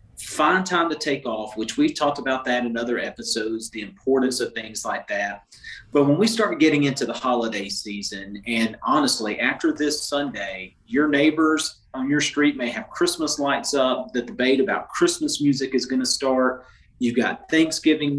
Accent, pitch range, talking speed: American, 115-155 Hz, 180 wpm